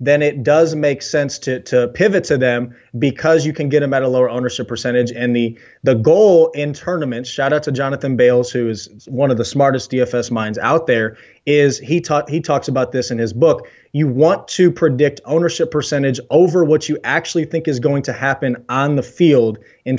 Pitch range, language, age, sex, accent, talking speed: 125-160 Hz, English, 20-39, male, American, 210 wpm